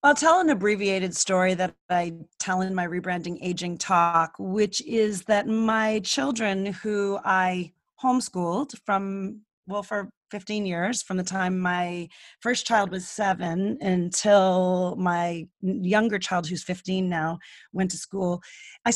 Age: 30-49